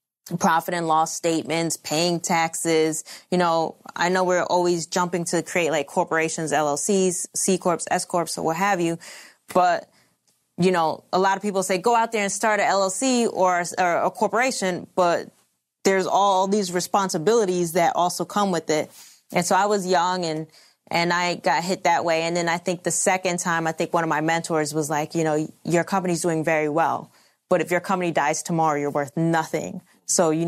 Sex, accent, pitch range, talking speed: female, American, 160-190 Hz, 195 wpm